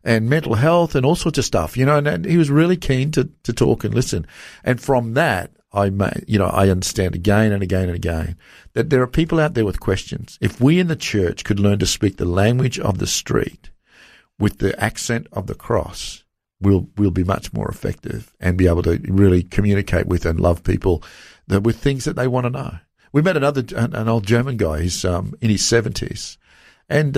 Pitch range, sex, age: 100-150 Hz, male, 50-69